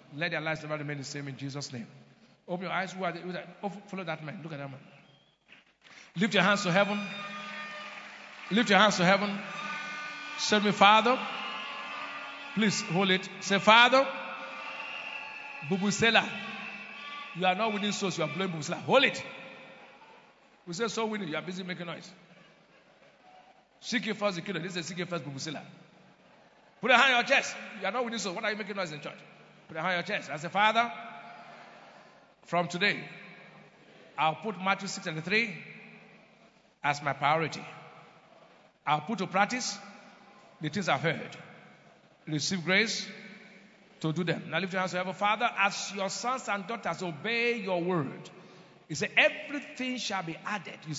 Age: 50-69